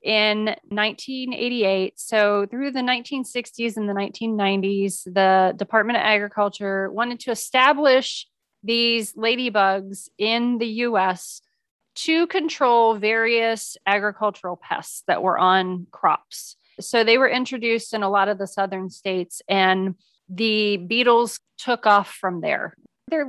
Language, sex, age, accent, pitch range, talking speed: English, female, 30-49, American, 195-240 Hz, 125 wpm